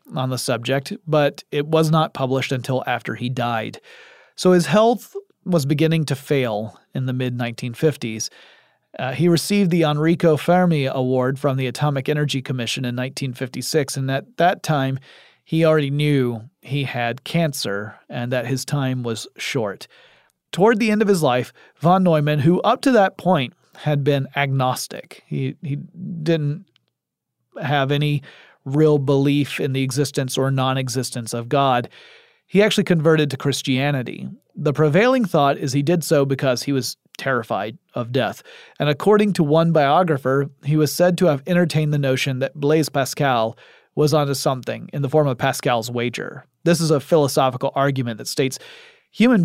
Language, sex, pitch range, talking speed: English, male, 130-165 Hz, 160 wpm